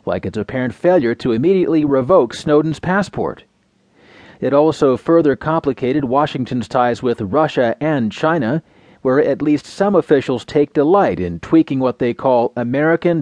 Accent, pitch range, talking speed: American, 125-160 Hz, 145 wpm